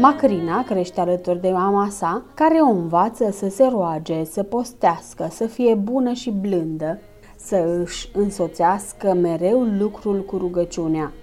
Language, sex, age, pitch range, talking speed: Romanian, female, 30-49, 175-235 Hz, 140 wpm